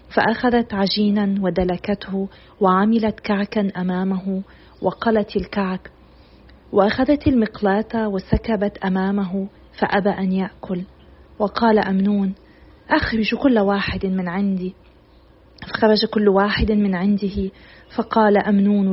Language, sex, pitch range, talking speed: Arabic, female, 195-225 Hz, 90 wpm